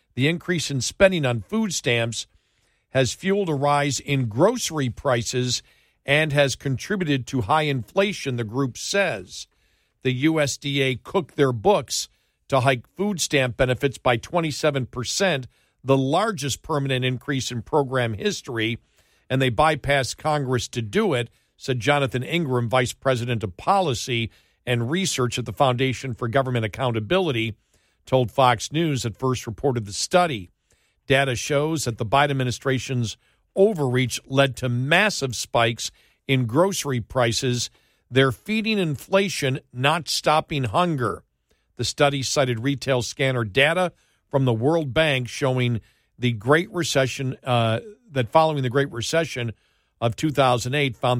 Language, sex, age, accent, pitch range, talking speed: English, male, 50-69, American, 120-155 Hz, 135 wpm